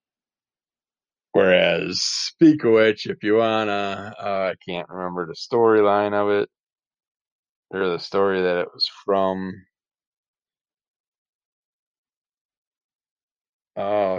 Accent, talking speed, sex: American, 100 wpm, male